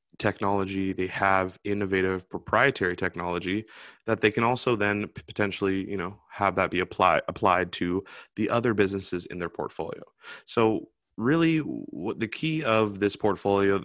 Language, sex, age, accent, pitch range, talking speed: English, male, 20-39, American, 95-110 Hz, 145 wpm